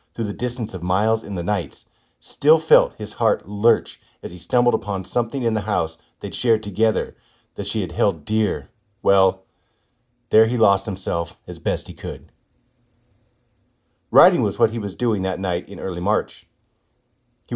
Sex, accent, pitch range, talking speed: male, American, 95-120 Hz, 170 wpm